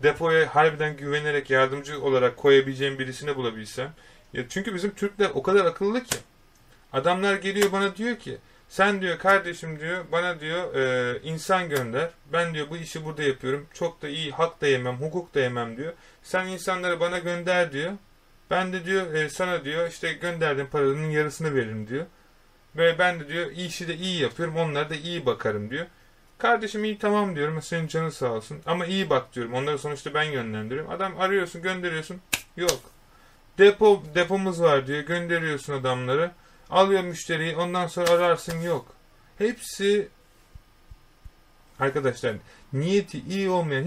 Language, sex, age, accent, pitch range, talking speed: Turkish, male, 30-49, native, 140-185 Hz, 155 wpm